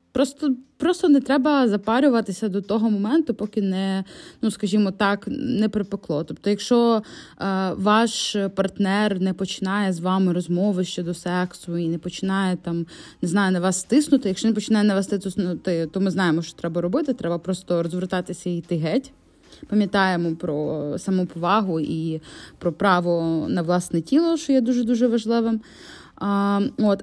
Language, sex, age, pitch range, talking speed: Ukrainian, female, 20-39, 180-220 Hz, 150 wpm